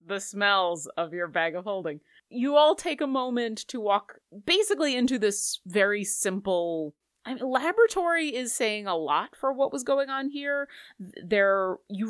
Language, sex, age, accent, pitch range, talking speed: English, female, 30-49, American, 175-235 Hz, 170 wpm